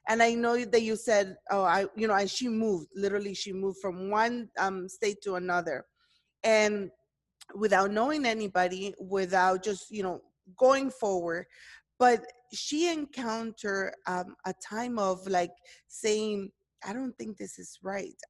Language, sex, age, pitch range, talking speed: English, female, 20-39, 185-225 Hz, 155 wpm